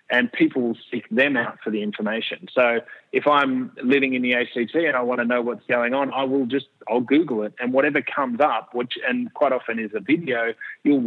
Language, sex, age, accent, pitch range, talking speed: English, male, 30-49, Australian, 115-140 Hz, 230 wpm